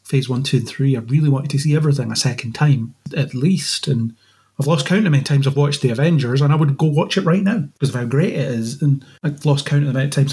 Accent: British